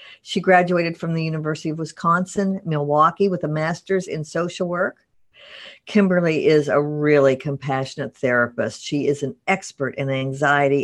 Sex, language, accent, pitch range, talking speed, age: female, English, American, 145-190 Hz, 145 wpm, 50-69